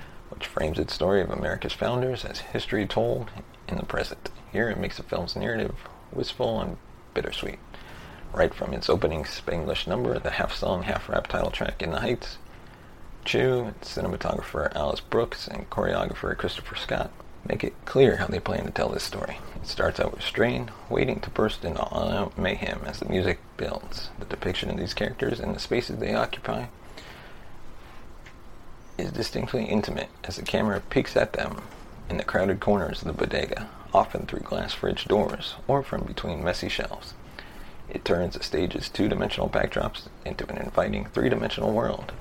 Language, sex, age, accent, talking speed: English, male, 30-49, American, 160 wpm